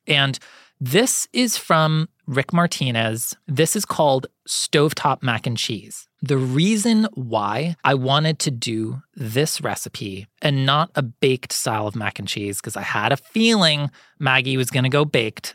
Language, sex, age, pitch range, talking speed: English, male, 30-49, 120-160 Hz, 160 wpm